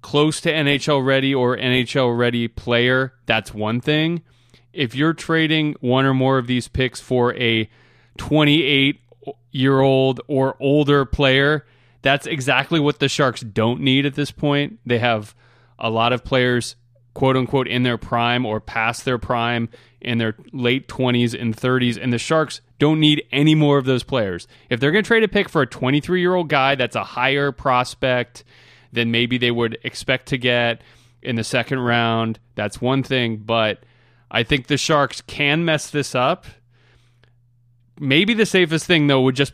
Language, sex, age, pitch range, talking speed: English, male, 20-39, 120-140 Hz, 165 wpm